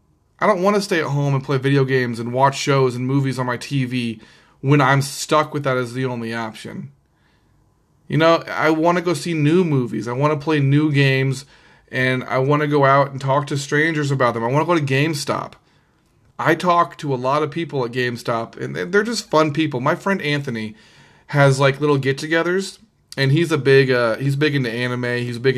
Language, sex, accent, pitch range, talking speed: English, male, American, 125-155 Hz, 220 wpm